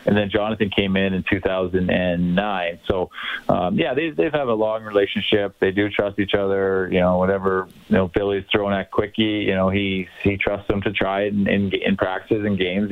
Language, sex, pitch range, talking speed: English, male, 95-110 Hz, 210 wpm